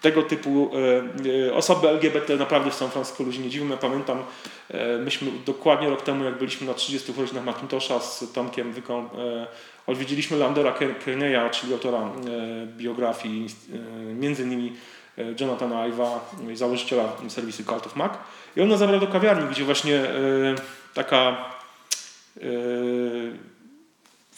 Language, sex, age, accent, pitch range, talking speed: Polish, male, 40-59, native, 125-160 Hz, 140 wpm